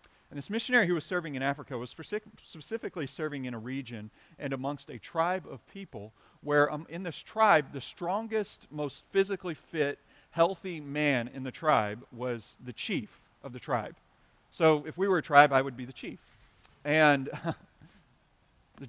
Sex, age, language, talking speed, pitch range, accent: male, 40-59, English, 170 wpm, 120-160 Hz, American